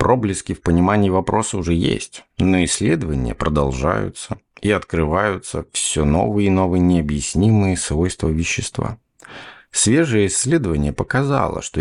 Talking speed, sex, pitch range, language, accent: 110 wpm, male, 85-115 Hz, Russian, native